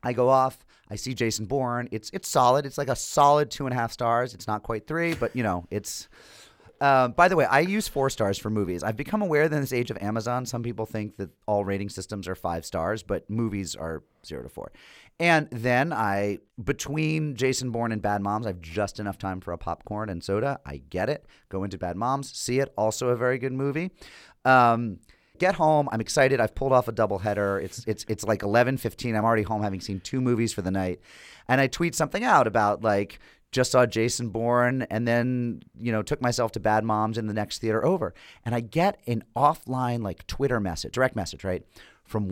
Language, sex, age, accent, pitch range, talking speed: English, male, 30-49, American, 100-130 Hz, 225 wpm